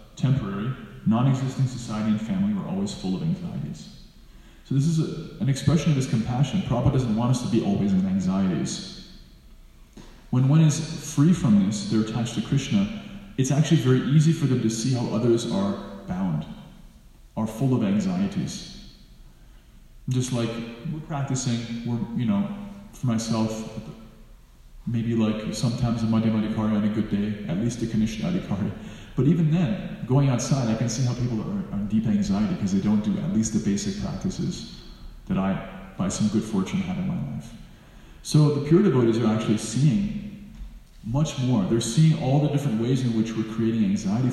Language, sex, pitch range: English, male, 115-180 Hz